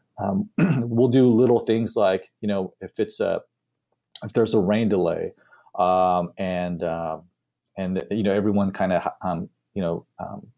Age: 30-49